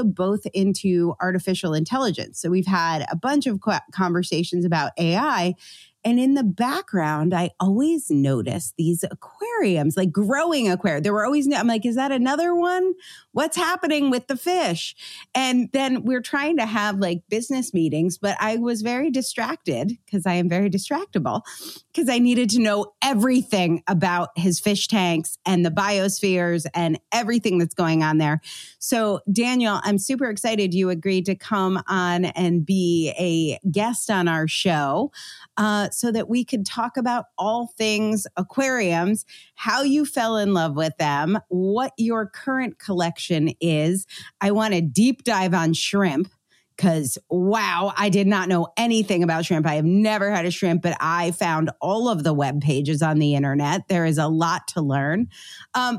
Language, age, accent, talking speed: English, 30-49, American, 165 wpm